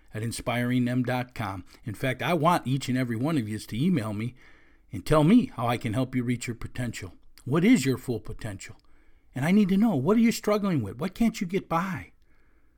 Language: English